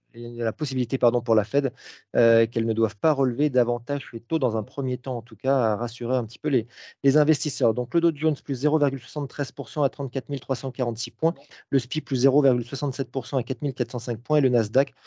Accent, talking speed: French, 195 wpm